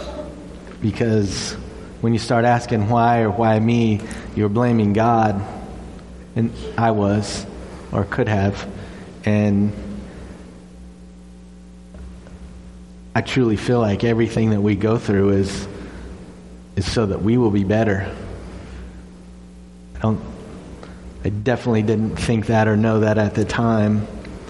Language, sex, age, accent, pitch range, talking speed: English, male, 30-49, American, 95-115 Hz, 120 wpm